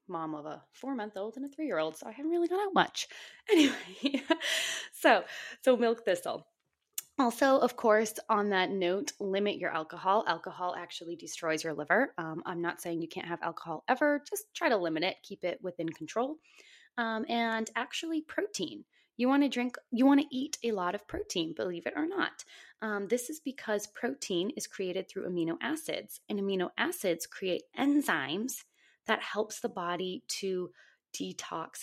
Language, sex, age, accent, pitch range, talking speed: English, female, 20-39, American, 175-240 Hz, 180 wpm